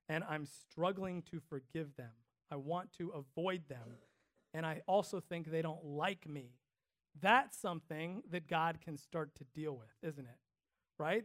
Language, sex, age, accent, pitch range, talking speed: English, male, 40-59, American, 145-190 Hz, 165 wpm